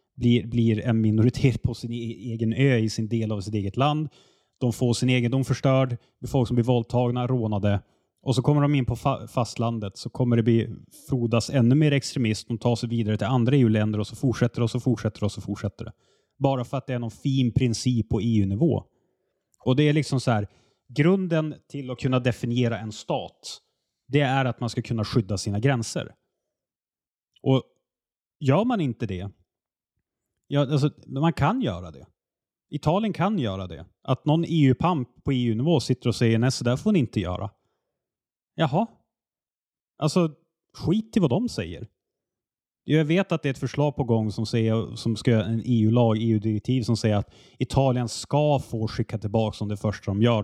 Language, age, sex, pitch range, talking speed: Swedish, 30-49, male, 110-135 Hz, 190 wpm